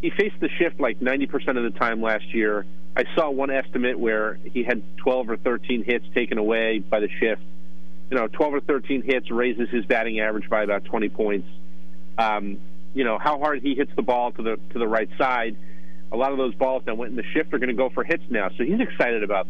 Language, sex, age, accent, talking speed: English, male, 40-59, American, 235 wpm